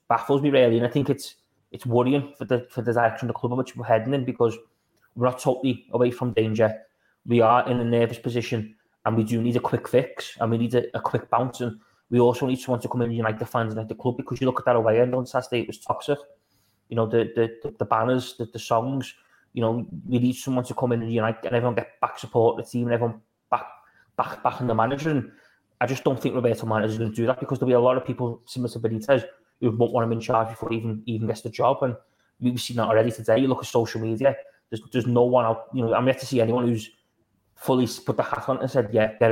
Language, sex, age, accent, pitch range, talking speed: English, male, 20-39, British, 115-125 Hz, 270 wpm